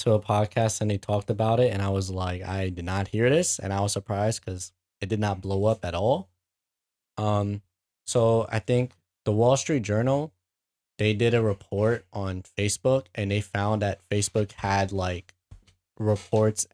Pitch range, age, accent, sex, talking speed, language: 95-110 Hz, 10-29, American, male, 185 wpm, English